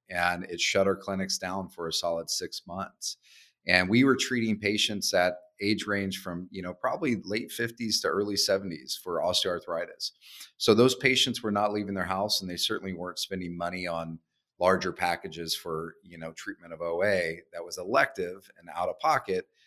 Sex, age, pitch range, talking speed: male, 30-49, 90-105 Hz, 185 wpm